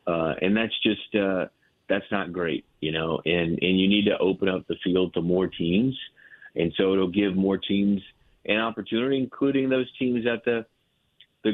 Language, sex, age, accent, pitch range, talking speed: English, male, 40-59, American, 85-105 Hz, 185 wpm